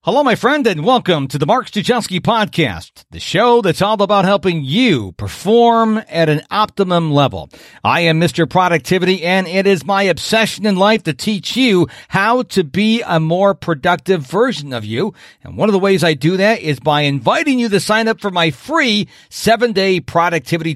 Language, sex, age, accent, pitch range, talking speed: English, male, 50-69, American, 160-220 Hz, 190 wpm